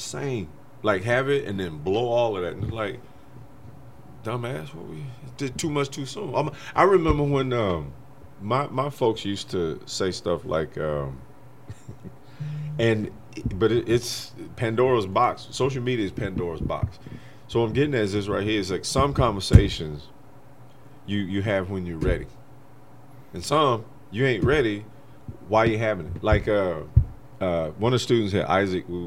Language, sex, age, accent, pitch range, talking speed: English, male, 30-49, American, 105-135 Hz, 165 wpm